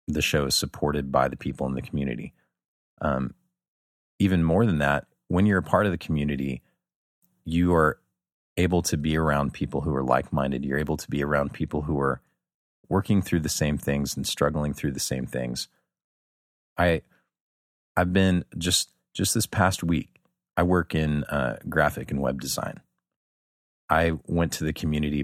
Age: 30-49